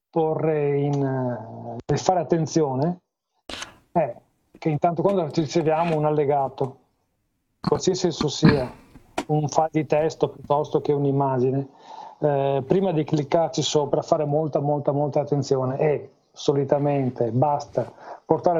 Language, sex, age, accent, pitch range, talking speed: Italian, male, 40-59, native, 140-165 Hz, 115 wpm